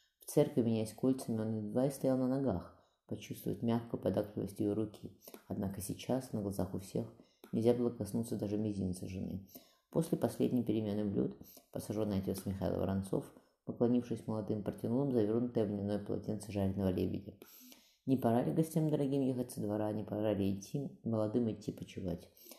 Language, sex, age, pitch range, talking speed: Russian, female, 20-39, 100-115 Hz, 155 wpm